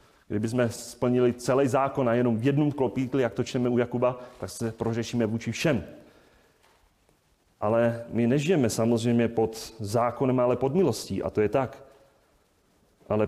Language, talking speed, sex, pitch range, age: Czech, 155 wpm, male, 115-155 Hz, 40-59